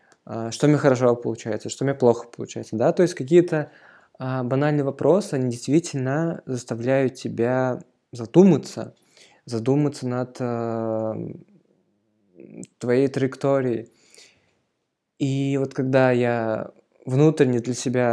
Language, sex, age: Russian, male, 20-39